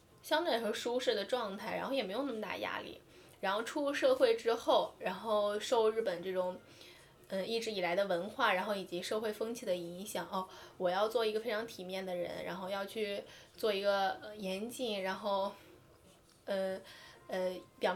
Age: 10-29